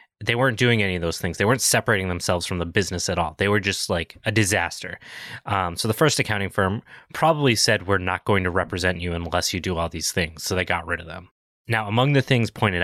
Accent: American